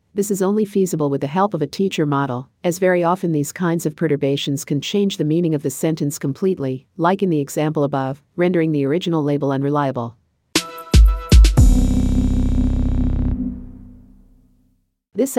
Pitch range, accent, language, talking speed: 130-175 Hz, American, English, 145 wpm